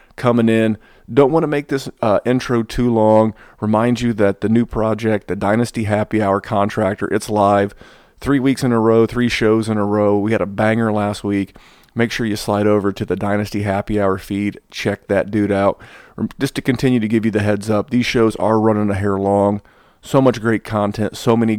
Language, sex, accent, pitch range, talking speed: English, male, American, 105-115 Hz, 215 wpm